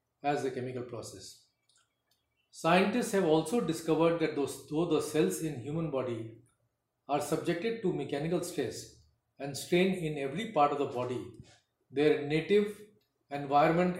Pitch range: 130-170 Hz